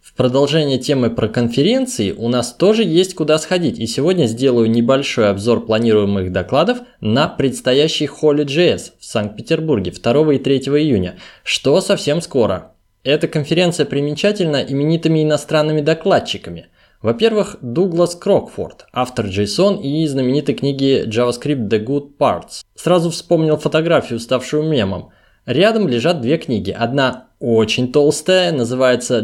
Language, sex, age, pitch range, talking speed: Russian, male, 20-39, 120-160 Hz, 125 wpm